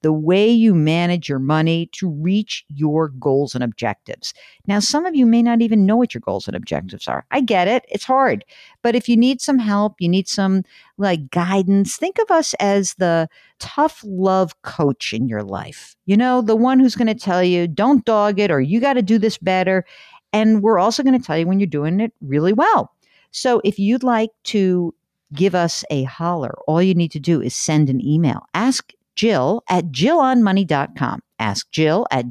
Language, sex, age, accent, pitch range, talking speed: English, female, 50-69, American, 160-235 Hz, 205 wpm